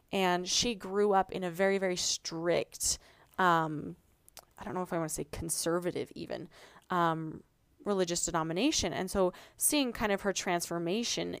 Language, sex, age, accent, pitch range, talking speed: English, female, 20-39, American, 180-255 Hz, 160 wpm